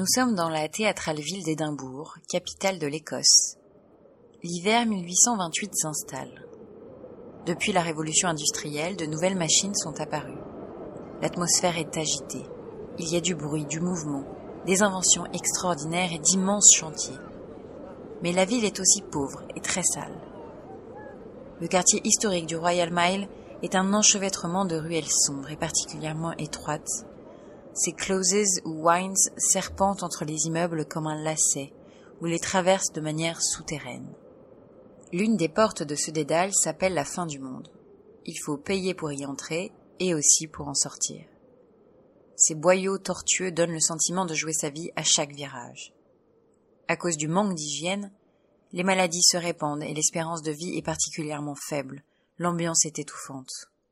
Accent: French